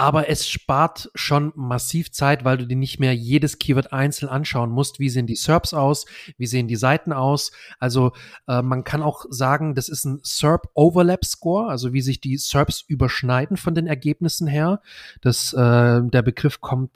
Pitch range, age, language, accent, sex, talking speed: 125-155 Hz, 30-49, German, German, male, 180 wpm